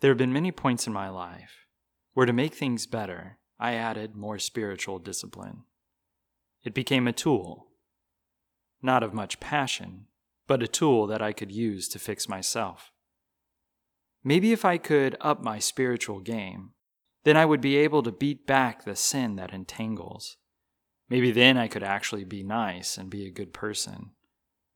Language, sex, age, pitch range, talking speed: English, male, 30-49, 95-125 Hz, 165 wpm